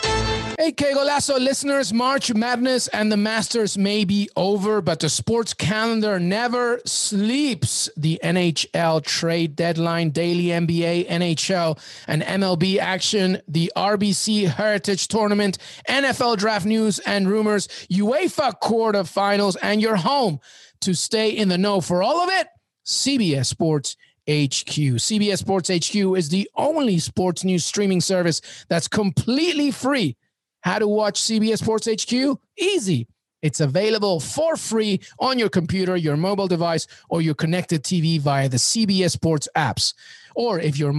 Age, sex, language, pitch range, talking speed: 30-49, male, English, 165-220 Hz, 140 wpm